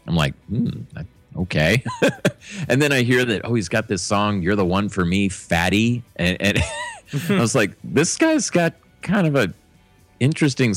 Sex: male